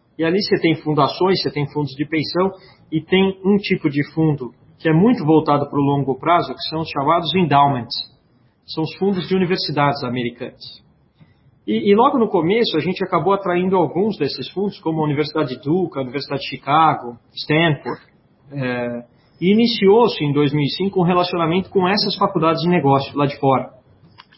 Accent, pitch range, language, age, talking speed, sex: Brazilian, 140-185 Hz, Portuguese, 40-59, 175 wpm, male